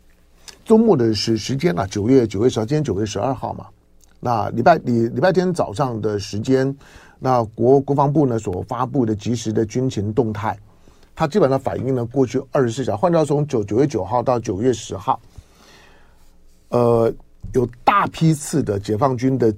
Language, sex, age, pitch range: Chinese, male, 50-69, 90-135 Hz